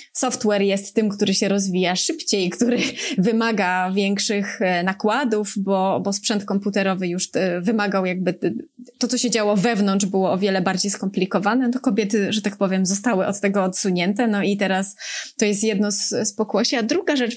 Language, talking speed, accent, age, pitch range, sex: Polish, 175 wpm, native, 20-39, 200-240 Hz, female